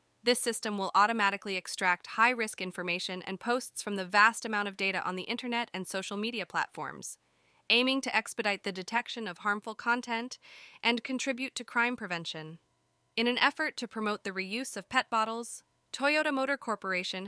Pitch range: 180-235 Hz